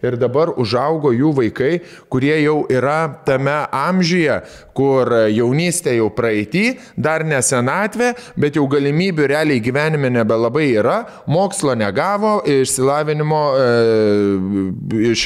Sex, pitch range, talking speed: male, 120-155 Hz, 115 wpm